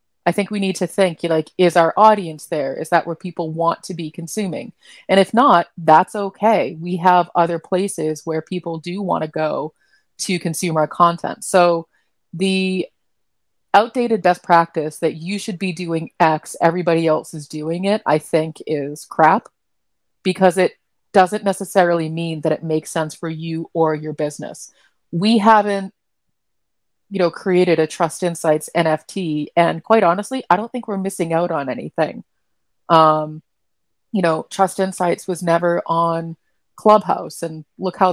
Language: English